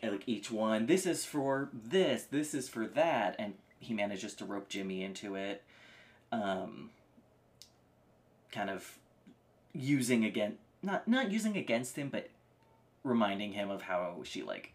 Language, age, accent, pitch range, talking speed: English, 30-49, American, 95-125 Hz, 145 wpm